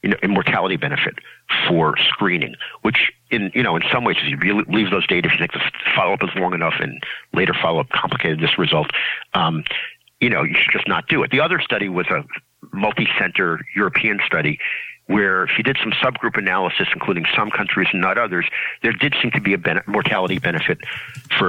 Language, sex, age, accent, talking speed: English, male, 50-69, American, 205 wpm